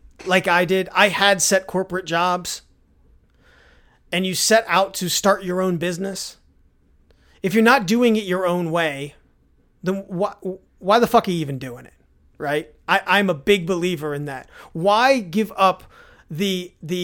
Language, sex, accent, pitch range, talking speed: English, male, American, 160-210 Hz, 160 wpm